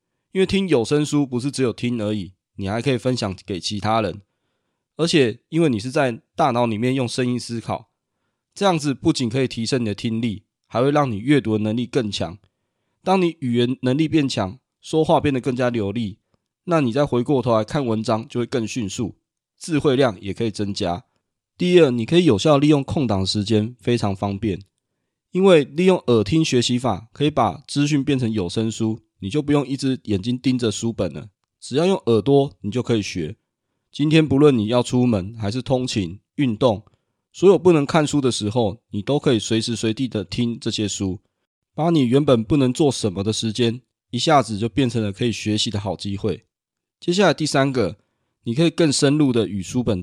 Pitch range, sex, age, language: 110-140 Hz, male, 20-39, Chinese